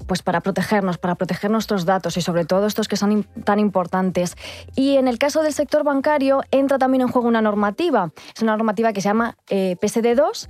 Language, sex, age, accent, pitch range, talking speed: Spanish, female, 20-39, Spanish, 195-230 Hz, 205 wpm